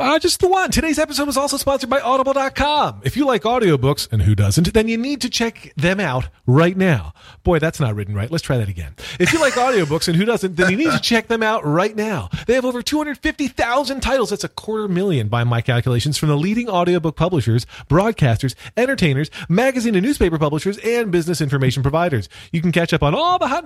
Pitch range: 125-200 Hz